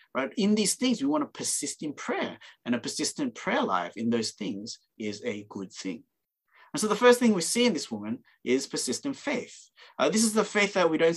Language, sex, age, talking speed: English, male, 30-49, 230 wpm